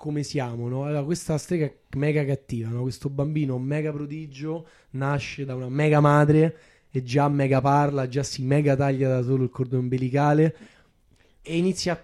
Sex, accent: male, native